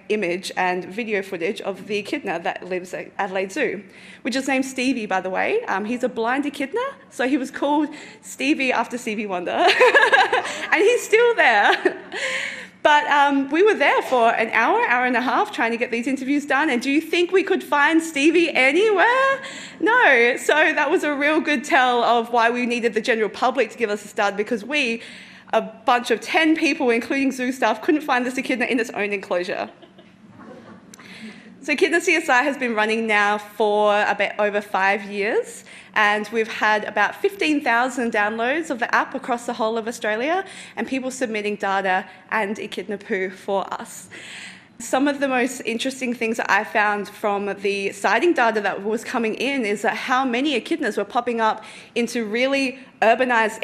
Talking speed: 185 wpm